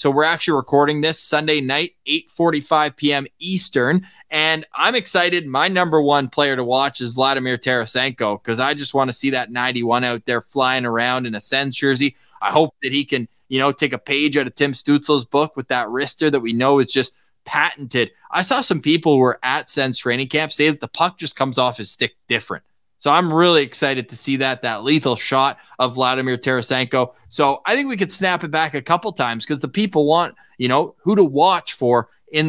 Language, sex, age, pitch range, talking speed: English, male, 20-39, 130-160 Hz, 215 wpm